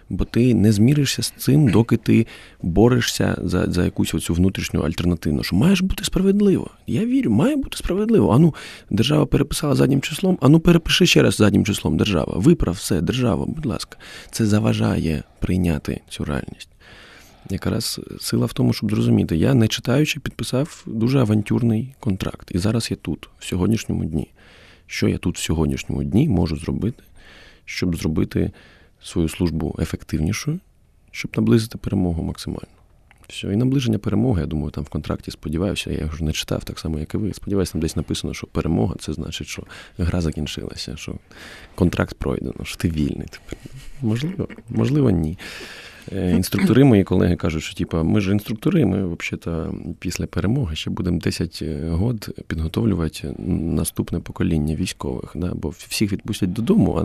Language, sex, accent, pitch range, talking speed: Ukrainian, male, native, 85-115 Hz, 160 wpm